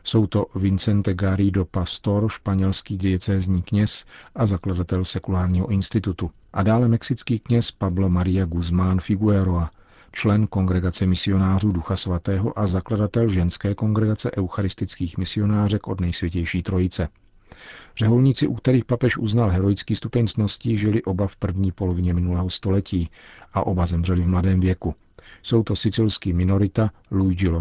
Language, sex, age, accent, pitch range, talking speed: Czech, male, 50-69, native, 90-105 Hz, 130 wpm